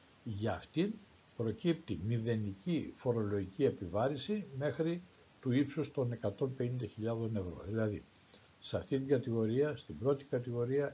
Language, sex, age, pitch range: Greek, male, 60-79, 105-140 Hz